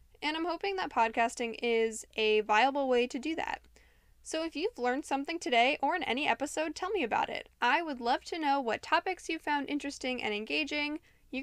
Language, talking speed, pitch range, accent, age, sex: English, 205 wpm, 225-285 Hz, American, 10-29, female